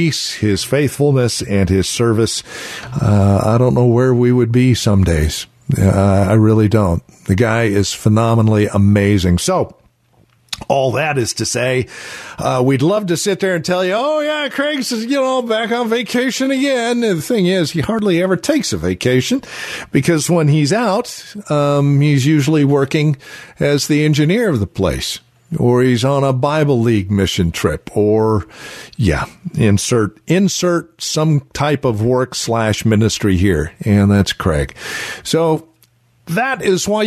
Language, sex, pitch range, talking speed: English, male, 105-165 Hz, 150 wpm